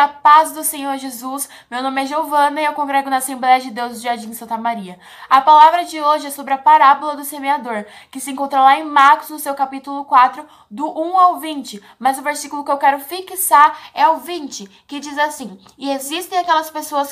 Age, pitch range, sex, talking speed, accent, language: 10-29, 255-310 Hz, female, 215 wpm, Brazilian, Portuguese